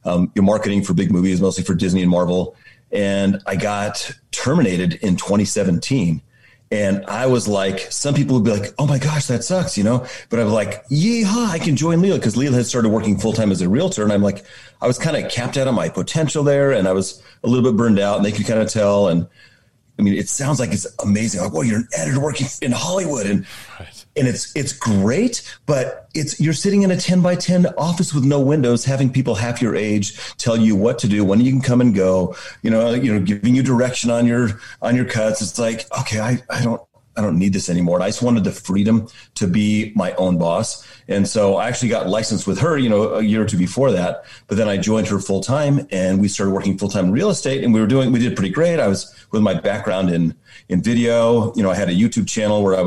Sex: male